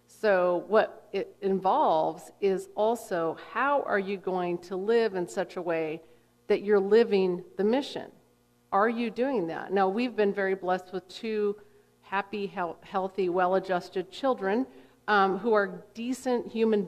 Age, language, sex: 50-69, English, female